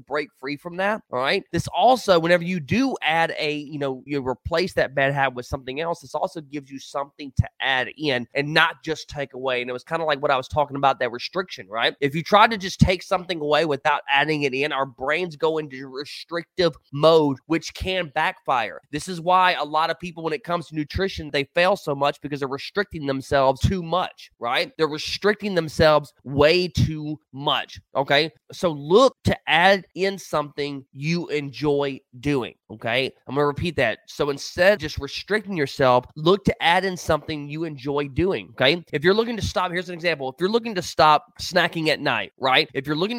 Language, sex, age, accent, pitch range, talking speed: English, male, 20-39, American, 140-175 Hz, 210 wpm